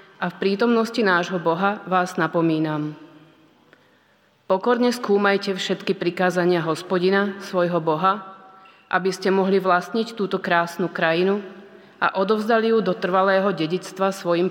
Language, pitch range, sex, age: Slovak, 175-200 Hz, female, 30-49